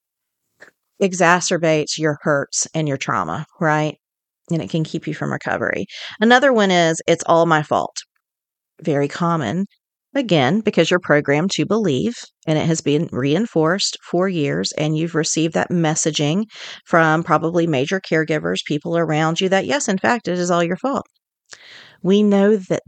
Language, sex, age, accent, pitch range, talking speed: English, female, 40-59, American, 160-200 Hz, 155 wpm